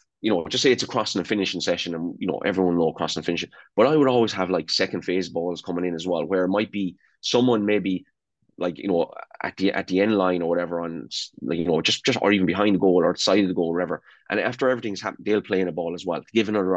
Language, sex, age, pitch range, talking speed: English, male, 20-39, 90-110 Hz, 285 wpm